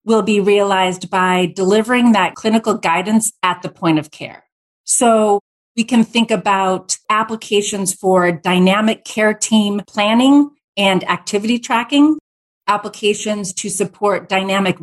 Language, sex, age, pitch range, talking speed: English, female, 30-49, 185-225 Hz, 125 wpm